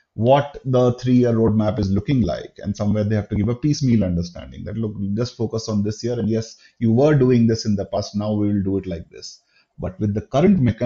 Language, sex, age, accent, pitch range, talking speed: English, male, 30-49, Indian, 105-145 Hz, 240 wpm